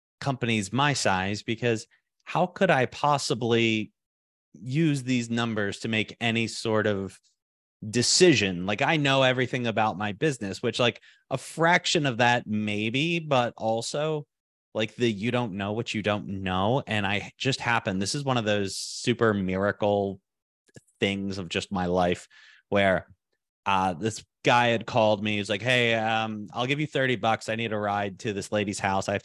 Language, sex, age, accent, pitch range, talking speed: English, male, 30-49, American, 100-130 Hz, 170 wpm